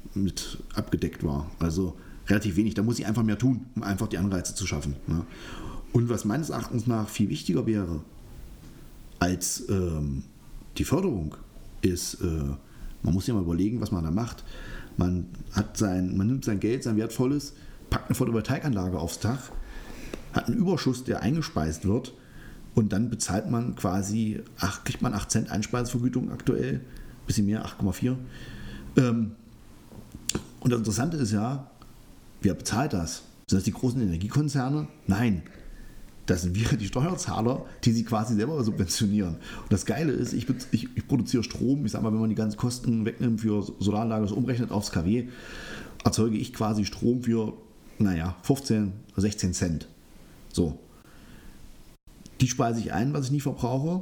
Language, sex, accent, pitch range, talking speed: German, male, German, 95-125 Hz, 155 wpm